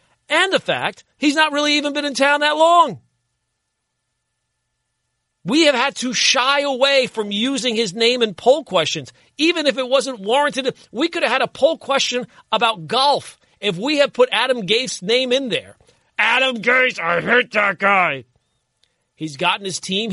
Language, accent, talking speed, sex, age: English, American, 175 wpm, male, 40-59